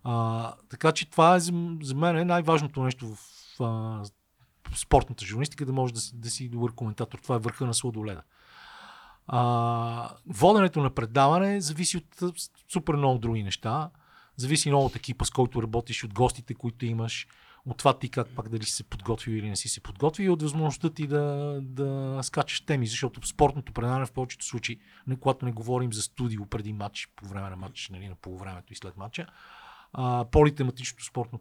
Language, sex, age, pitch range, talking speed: Bulgarian, male, 40-59, 115-145 Hz, 195 wpm